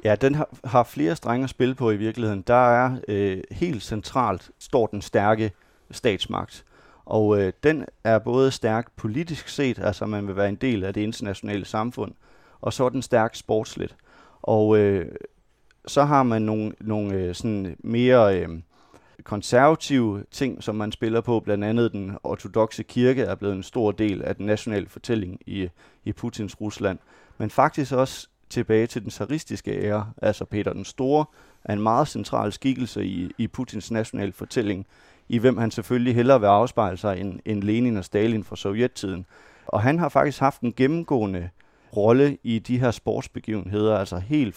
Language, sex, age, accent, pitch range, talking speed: Danish, male, 30-49, native, 100-125 Hz, 170 wpm